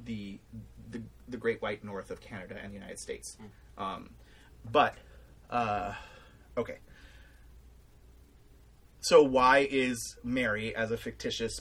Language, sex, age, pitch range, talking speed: English, male, 30-49, 100-135 Hz, 120 wpm